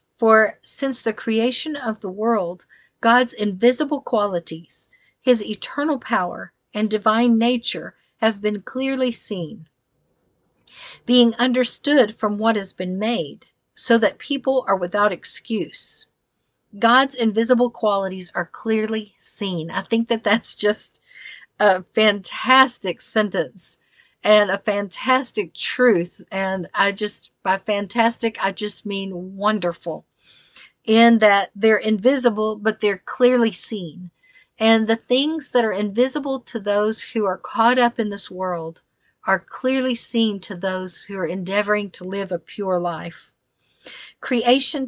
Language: English